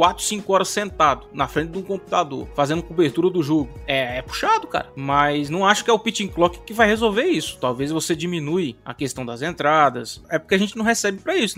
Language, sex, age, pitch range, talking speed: Portuguese, male, 20-39, 160-220 Hz, 230 wpm